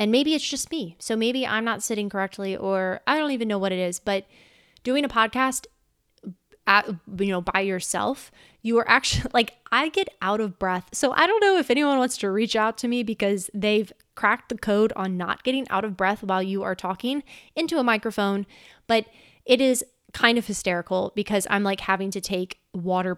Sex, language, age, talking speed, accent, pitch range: female, English, 20-39, 205 wpm, American, 195-245 Hz